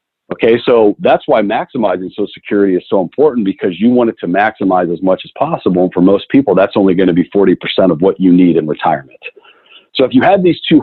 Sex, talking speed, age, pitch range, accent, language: male, 235 wpm, 50-69, 100-150 Hz, American, English